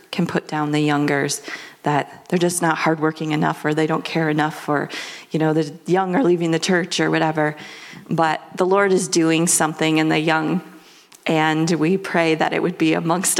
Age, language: 30-49, English